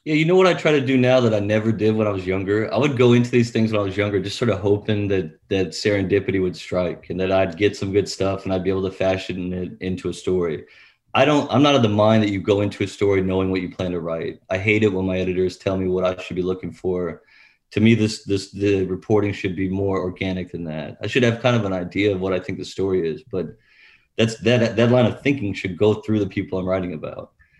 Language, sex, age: English, male, 30-49